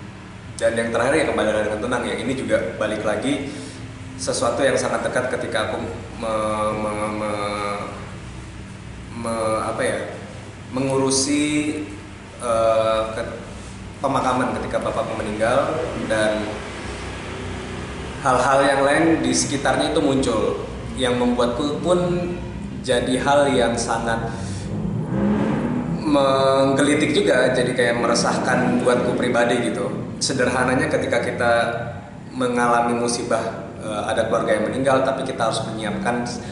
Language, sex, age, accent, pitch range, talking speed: Indonesian, male, 20-39, native, 105-125 Hz, 110 wpm